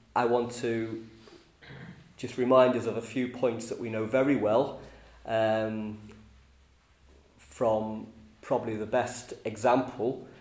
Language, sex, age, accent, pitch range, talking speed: English, male, 30-49, British, 110-135 Hz, 120 wpm